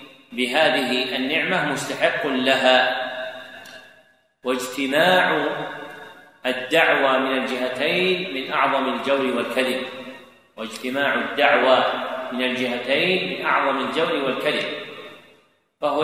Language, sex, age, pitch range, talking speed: Arabic, male, 40-59, 130-150 Hz, 80 wpm